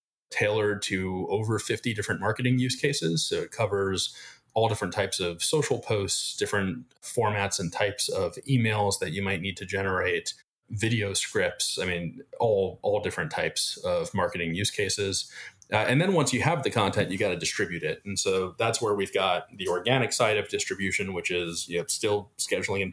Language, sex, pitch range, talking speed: English, male, 95-125 Hz, 185 wpm